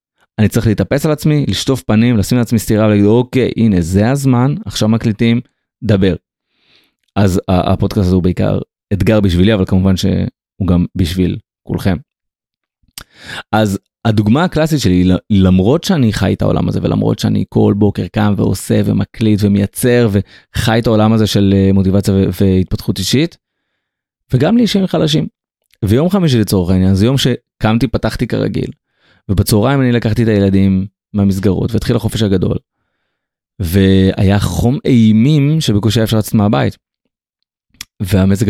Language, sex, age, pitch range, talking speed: Hebrew, male, 30-49, 100-125 Hz, 135 wpm